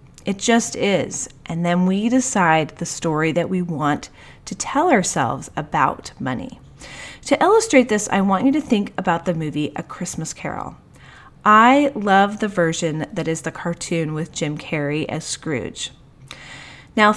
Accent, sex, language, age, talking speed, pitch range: American, female, English, 30-49, 155 wpm, 170-230 Hz